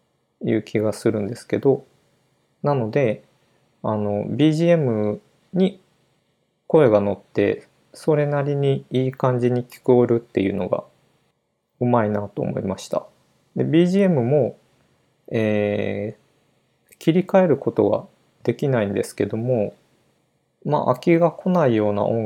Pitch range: 105-145 Hz